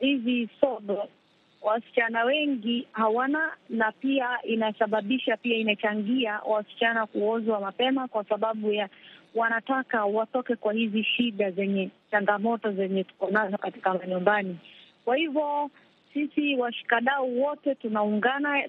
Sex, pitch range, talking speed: female, 215-260 Hz, 110 wpm